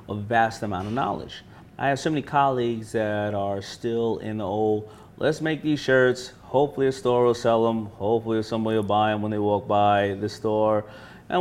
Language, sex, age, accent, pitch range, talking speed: English, male, 30-49, American, 105-120 Hz, 200 wpm